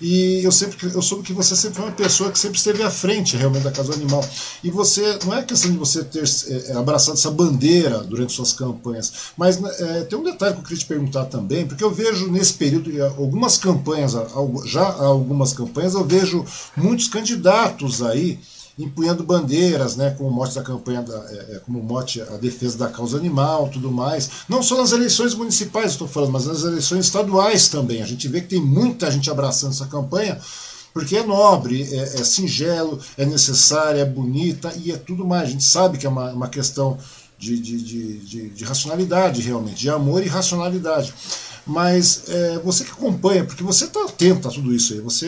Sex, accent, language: male, Brazilian, Portuguese